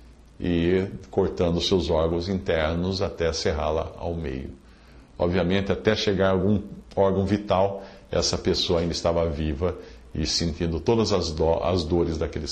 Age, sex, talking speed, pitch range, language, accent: 50-69, male, 135 wpm, 85-125 Hz, English, Brazilian